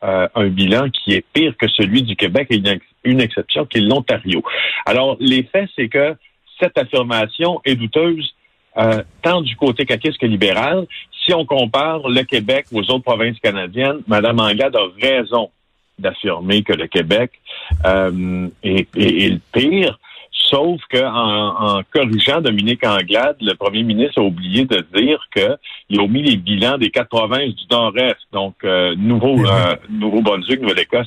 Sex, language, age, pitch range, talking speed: male, French, 50-69, 100-130 Hz, 170 wpm